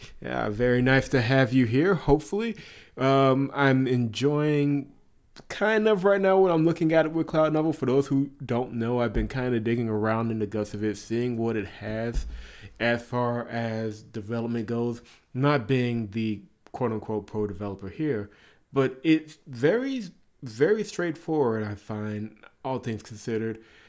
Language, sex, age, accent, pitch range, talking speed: English, male, 30-49, American, 110-140 Hz, 165 wpm